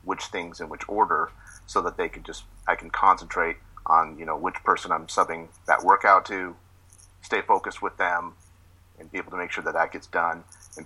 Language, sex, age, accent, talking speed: English, male, 40-59, American, 210 wpm